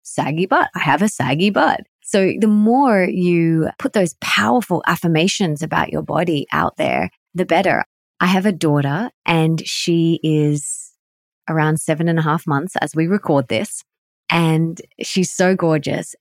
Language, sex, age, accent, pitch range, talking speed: English, female, 20-39, Australian, 155-195 Hz, 160 wpm